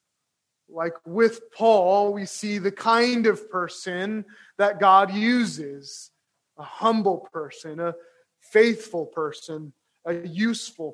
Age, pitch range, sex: 20-39, 165-210 Hz, male